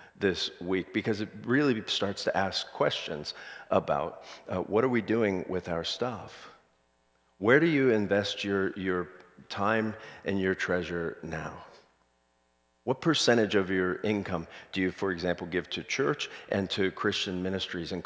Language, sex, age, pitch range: English, male, 50-69, 80-105 Hz